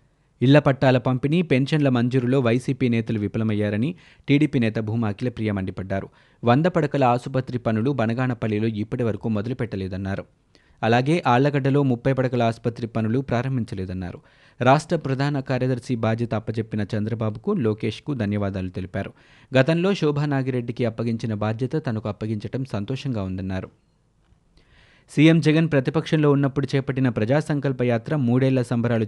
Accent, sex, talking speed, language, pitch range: native, male, 105 wpm, Telugu, 110-135 Hz